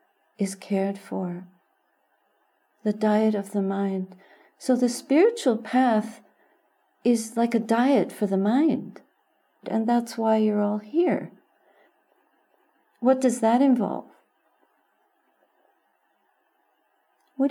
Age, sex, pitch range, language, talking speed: 50-69, female, 210-255 Hz, English, 105 wpm